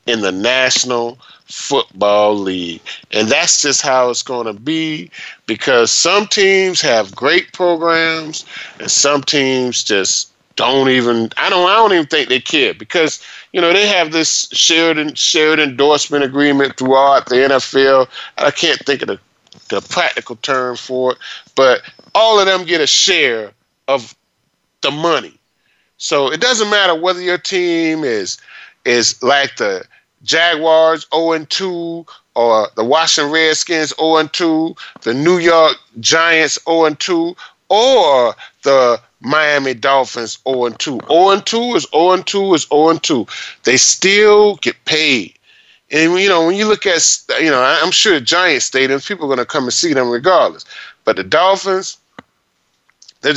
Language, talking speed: English, 145 wpm